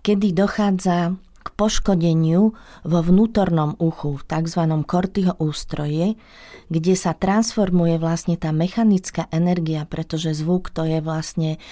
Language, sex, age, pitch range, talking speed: Slovak, female, 40-59, 160-190 Hz, 120 wpm